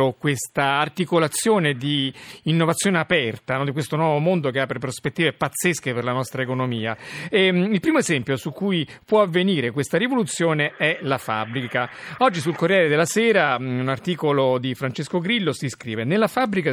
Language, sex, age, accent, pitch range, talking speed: Italian, male, 40-59, native, 130-180 Hz, 155 wpm